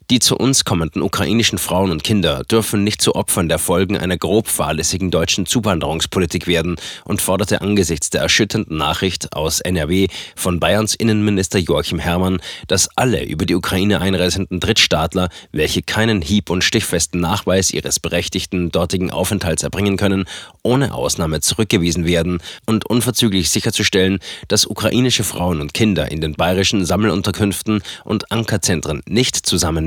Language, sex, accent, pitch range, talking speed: German, male, German, 90-105 Hz, 145 wpm